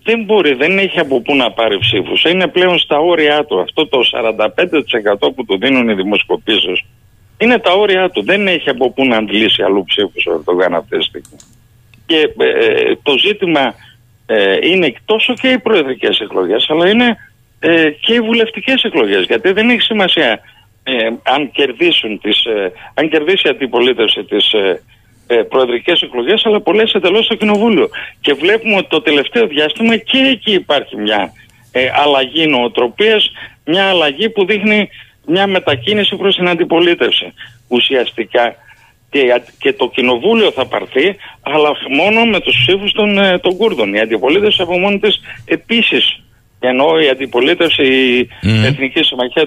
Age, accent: 60-79, native